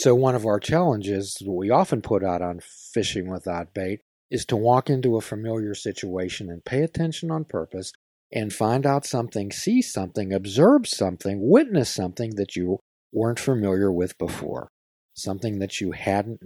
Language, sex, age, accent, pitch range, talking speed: English, male, 50-69, American, 100-155 Hz, 170 wpm